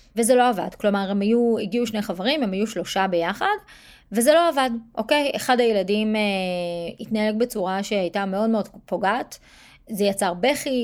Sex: female